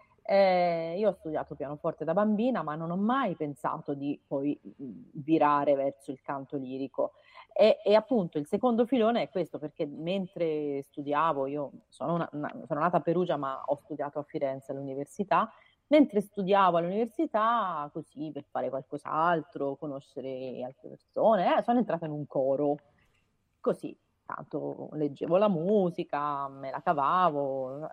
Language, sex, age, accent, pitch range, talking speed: Italian, female, 30-49, native, 140-205 Hz, 140 wpm